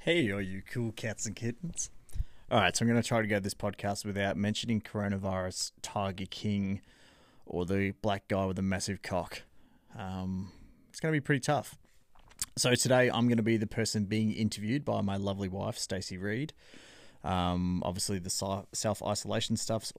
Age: 30-49